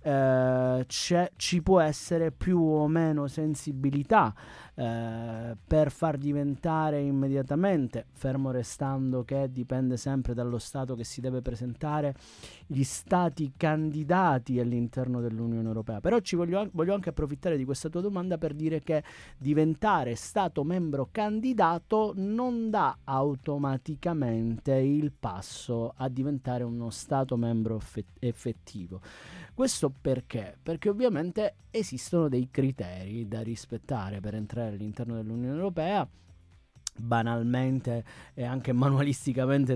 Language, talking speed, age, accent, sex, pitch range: Italian, 115 wpm, 30-49, native, male, 120-155 Hz